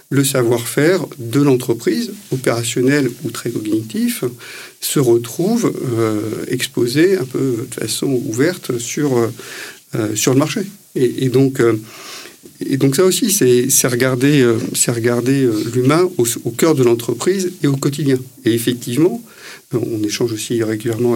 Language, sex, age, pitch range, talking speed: French, male, 50-69, 125-155 Hz, 145 wpm